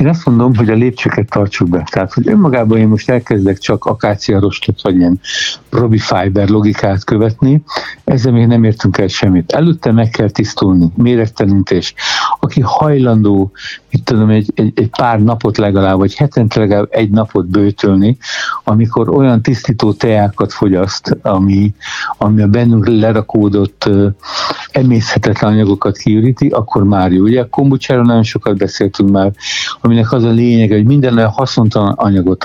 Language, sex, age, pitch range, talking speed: Hungarian, male, 60-79, 100-120 Hz, 150 wpm